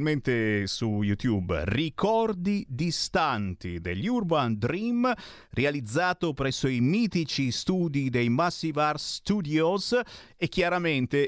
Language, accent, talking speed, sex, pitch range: Italian, native, 95 wpm, male, 110-140 Hz